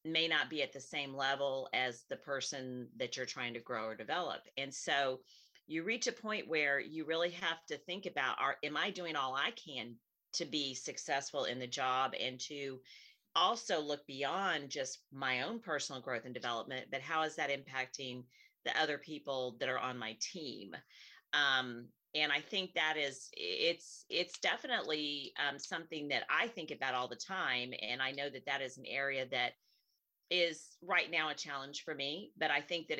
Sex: female